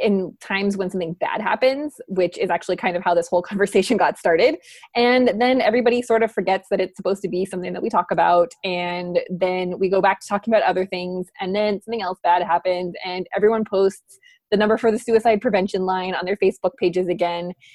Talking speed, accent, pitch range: 215 wpm, American, 180-230 Hz